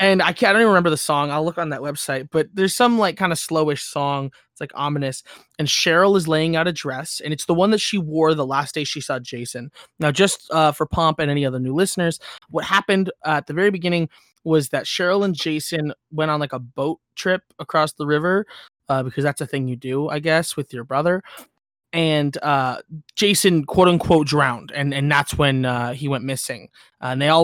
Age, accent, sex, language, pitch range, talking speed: 20-39, American, male, English, 140-170 Hz, 225 wpm